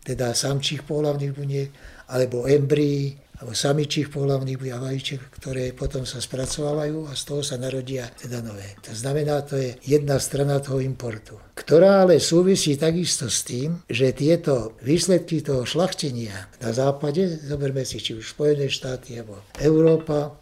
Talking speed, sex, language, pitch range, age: 145 wpm, male, Slovak, 130-150 Hz, 60-79